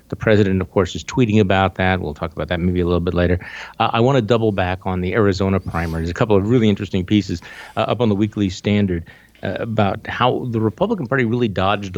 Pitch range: 90-110 Hz